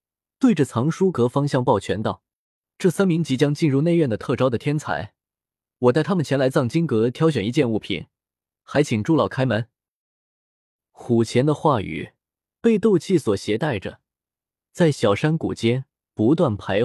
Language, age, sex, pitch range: Chinese, 20-39, male, 115-165 Hz